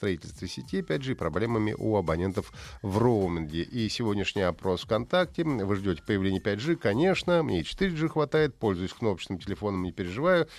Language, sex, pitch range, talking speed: Russian, male, 95-130 Hz, 140 wpm